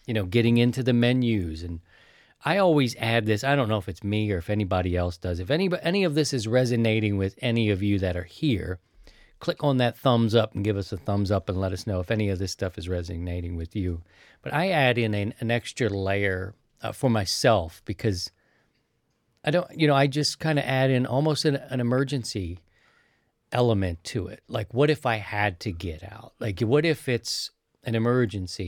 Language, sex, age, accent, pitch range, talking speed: English, male, 40-59, American, 95-125 Hz, 215 wpm